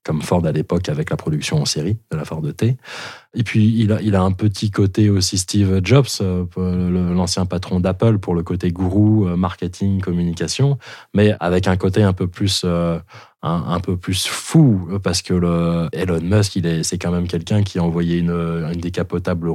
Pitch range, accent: 85-100 Hz, French